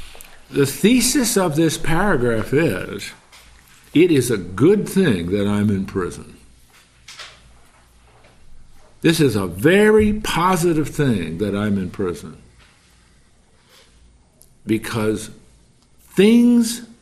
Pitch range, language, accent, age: 95-160 Hz, English, American, 50-69